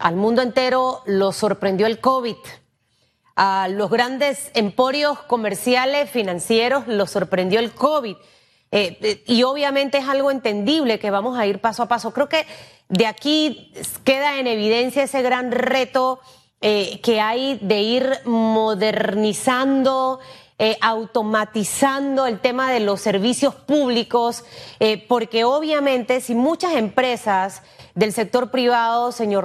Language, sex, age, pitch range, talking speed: Spanish, female, 30-49, 210-260 Hz, 130 wpm